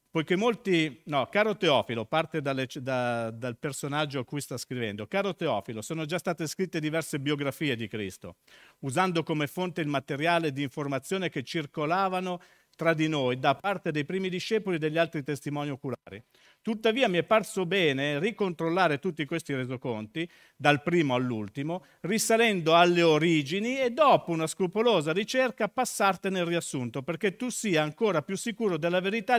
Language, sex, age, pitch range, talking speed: Italian, male, 50-69, 145-200 Hz, 155 wpm